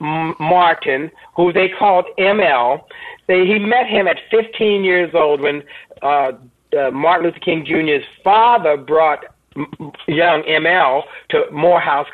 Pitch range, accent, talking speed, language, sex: 150-190 Hz, American, 125 wpm, English, male